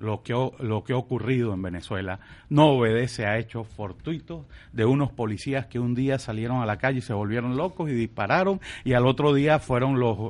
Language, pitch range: Spanish, 115-160 Hz